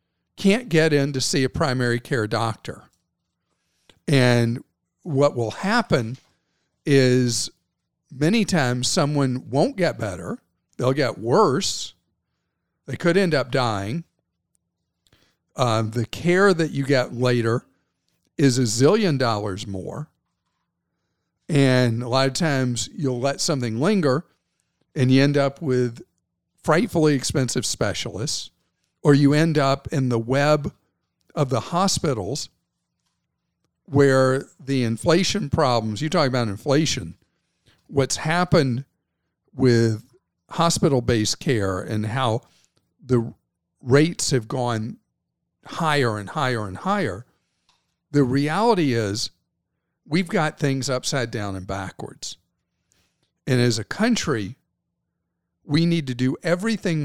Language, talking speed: English, 115 wpm